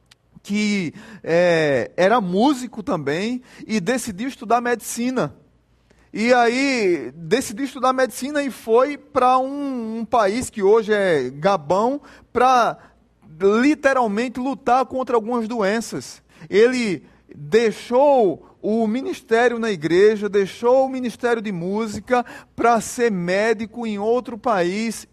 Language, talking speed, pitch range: Portuguese, 110 wpm, 190-240 Hz